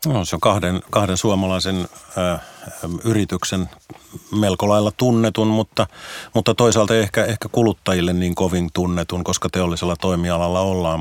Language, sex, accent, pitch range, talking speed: Finnish, male, native, 85-95 Hz, 130 wpm